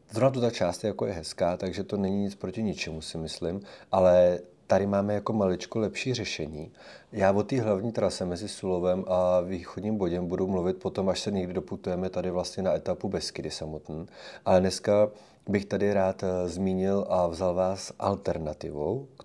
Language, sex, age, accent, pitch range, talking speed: Czech, male, 30-49, native, 85-100 Hz, 175 wpm